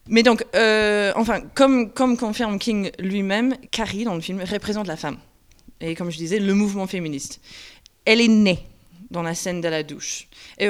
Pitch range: 175-220 Hz